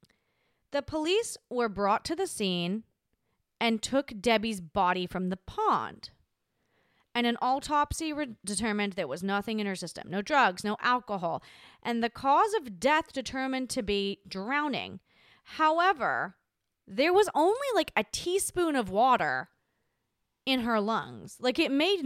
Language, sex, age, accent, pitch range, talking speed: English, female, 30-49, American, 195-255 Hz, 140 wpm